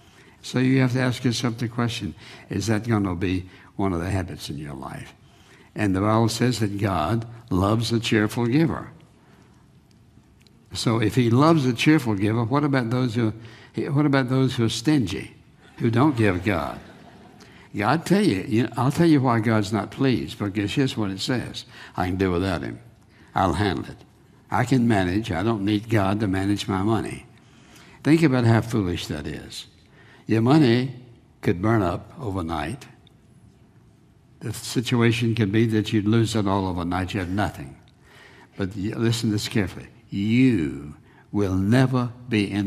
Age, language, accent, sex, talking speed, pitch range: 60-79, English, American, male, 170 wpm, 95-120 Hz